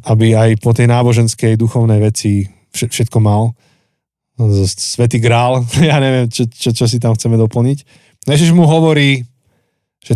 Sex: male